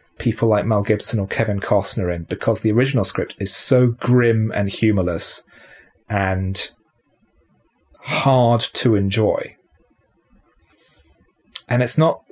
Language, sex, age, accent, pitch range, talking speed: English, male, 30-49, British, 110-135 Hz, 115 wpm